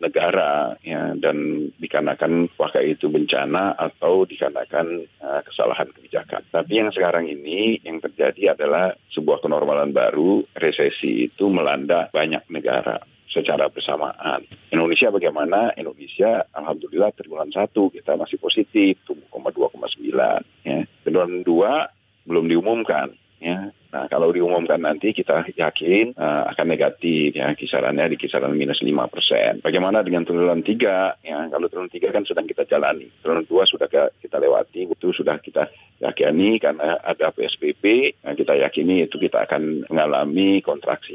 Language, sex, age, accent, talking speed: Indonesian, male, 40-59, native, 135 wpm